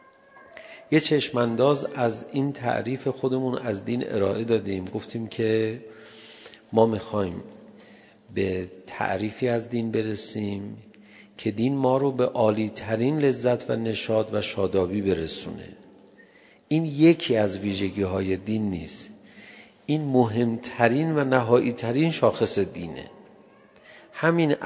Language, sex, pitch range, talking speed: Persian, male, 105-130 Hz, 105 wpm